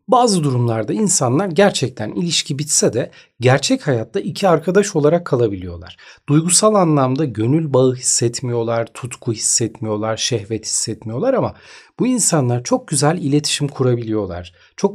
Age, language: 40-59, Turkish